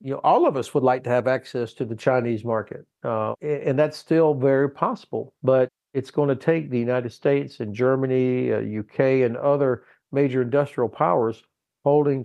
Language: German